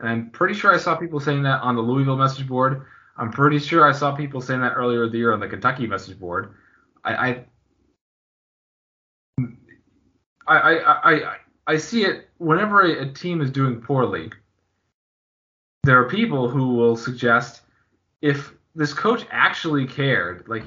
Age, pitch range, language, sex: 20-39, 115-160 Hz, English, male